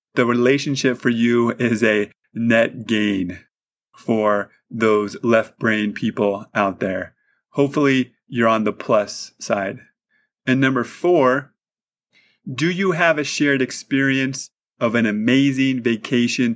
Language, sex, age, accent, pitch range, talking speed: English, male, 30-49, American, 110-130 Hz, 125 wpm